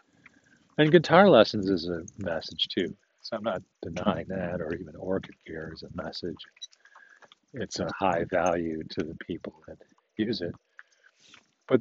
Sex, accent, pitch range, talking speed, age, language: male, American, 95-130 Hz, 150 wpm, 50-69, English